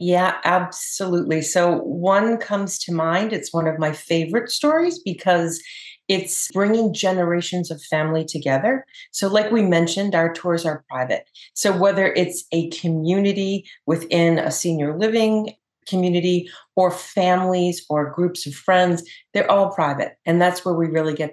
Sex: female